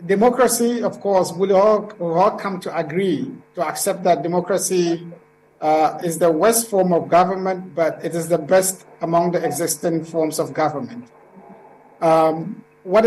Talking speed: 150 wpm